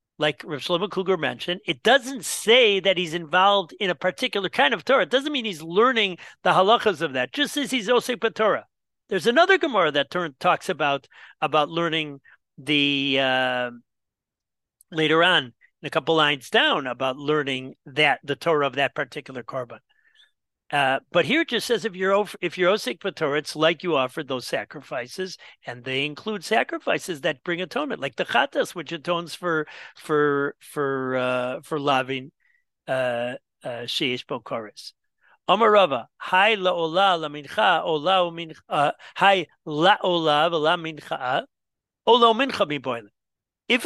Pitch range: 140-200 Hz